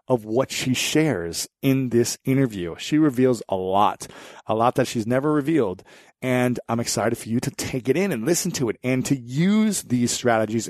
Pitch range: 120-155 Hz